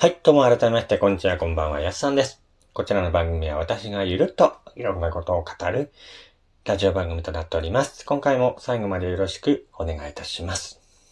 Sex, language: male, Japanese